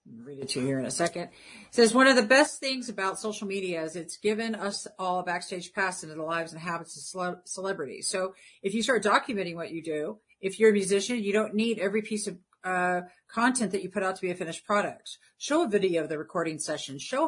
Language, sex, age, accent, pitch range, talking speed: English, female, 50-69, American, 180-220 Hz, 245 wpm